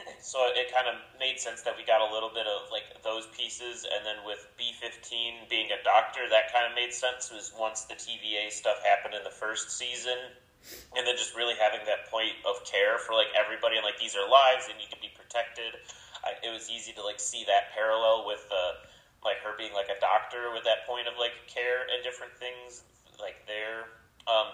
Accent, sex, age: American, male, 30-49